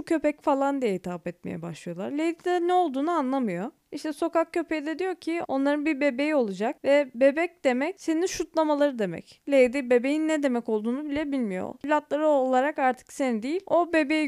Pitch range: 240-315 Hz